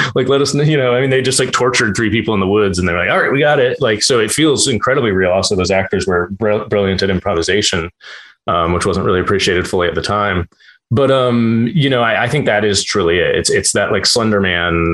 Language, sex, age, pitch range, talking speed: English, male, 30-49, 90-115 Hz, 245 wpm